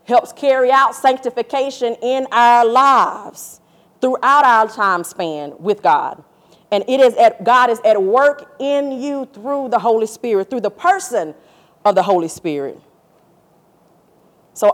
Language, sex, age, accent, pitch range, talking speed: English, female, 40-59, American, 175-240 Hz, 145 wpm